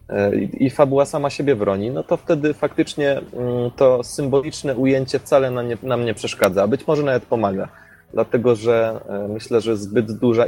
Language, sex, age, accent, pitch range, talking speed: Polish, male, 20-39, native, 105-130 Hz, 165 wpm